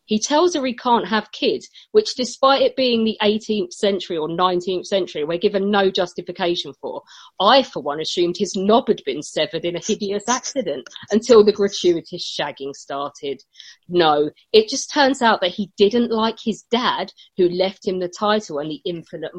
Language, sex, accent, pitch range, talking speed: English, female, British, 165-215 Hz, 185 wpm